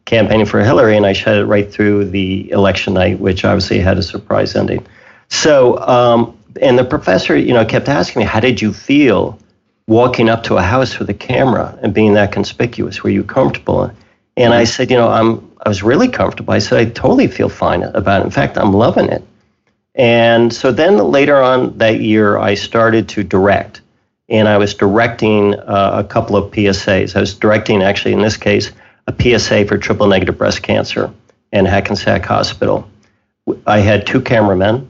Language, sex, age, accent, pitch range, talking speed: English, male, 40-59, American, 100-115 Hz, 190 wpm